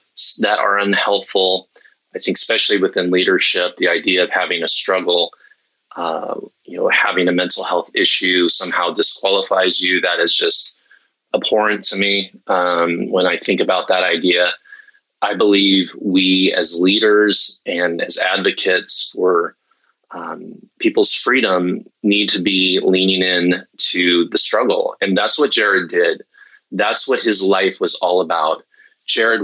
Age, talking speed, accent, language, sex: 20-39, 145 wpm, American, English, male